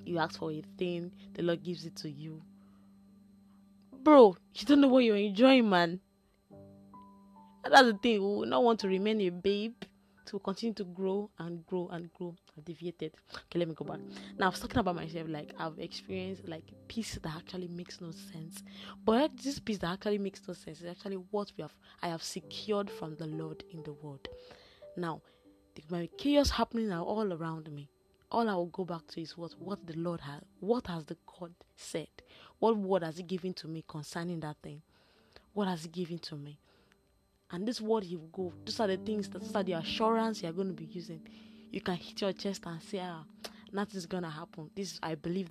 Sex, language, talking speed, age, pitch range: female, English, 210 wpm, 10-29, 165-205 Hz